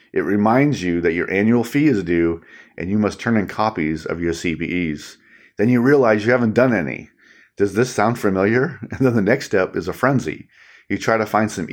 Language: English